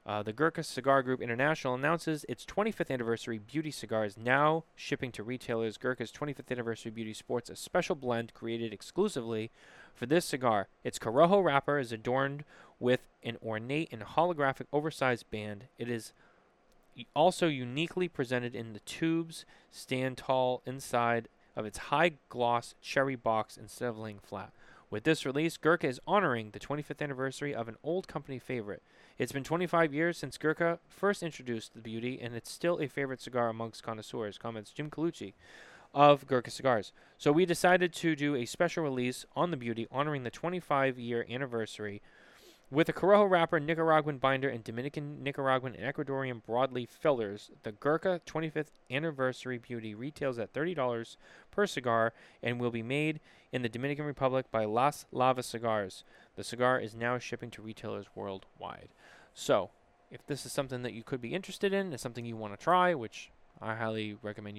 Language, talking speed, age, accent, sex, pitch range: English, 165 wpm, 20-39, American, male, 115-155 Hz